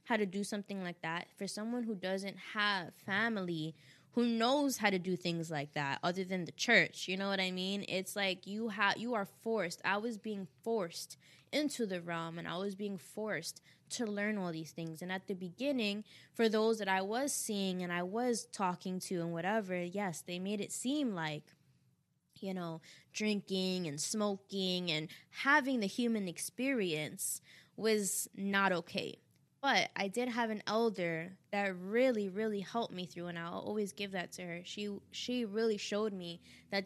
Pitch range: 175-225 Hz